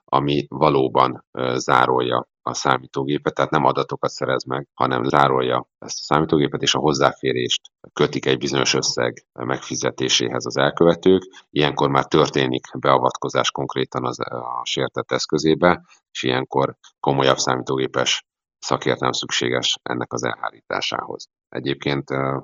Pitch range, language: 65-70 Hz, Hungarian